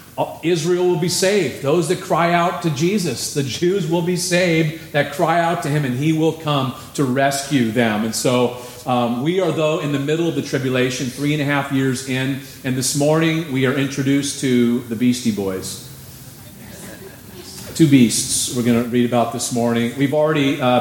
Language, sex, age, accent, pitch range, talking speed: English, male, 40-59, American, 120-150 Hz, 195 wpm